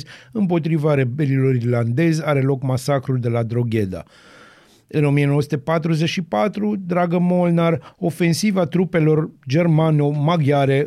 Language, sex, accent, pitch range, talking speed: Romanian, male, native, 135-155 Hz, 90 wpm